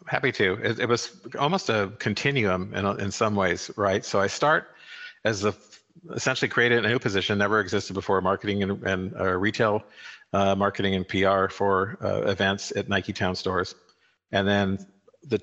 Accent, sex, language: American, male, English